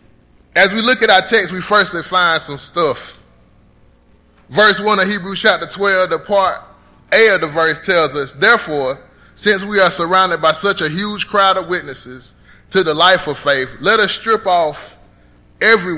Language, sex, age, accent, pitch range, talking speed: English, male, 20-39, American, 155-205 Hz, 175 wpm